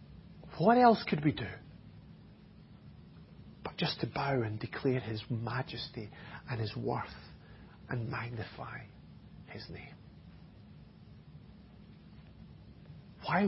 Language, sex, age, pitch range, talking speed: English, male, 40-59, 145-205 Hz, 95 wpm